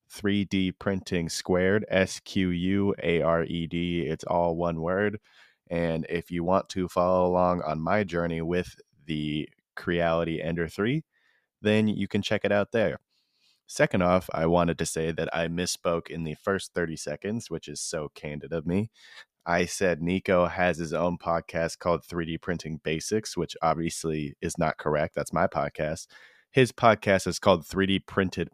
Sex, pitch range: male, 85-95 Hz